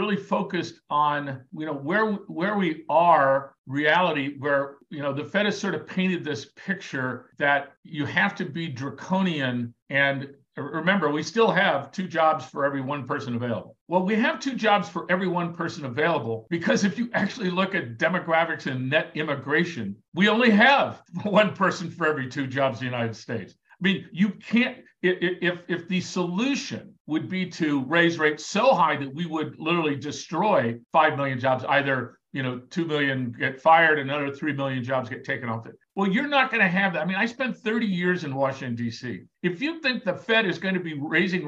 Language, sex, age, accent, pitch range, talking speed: English, male, 50-69, American, 135-185 Hz, 195 wpm